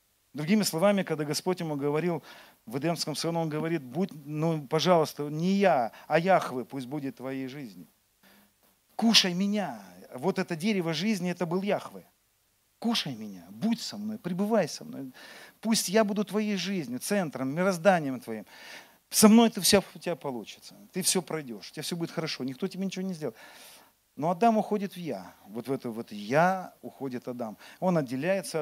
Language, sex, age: Russian, male, 40-59